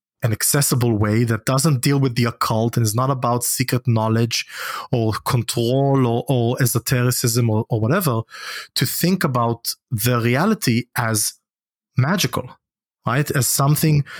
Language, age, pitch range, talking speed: English, 30-49, 115-145 Hz, 140 wpm